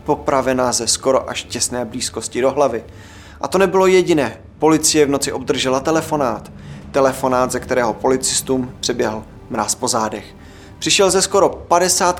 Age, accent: 20-39, native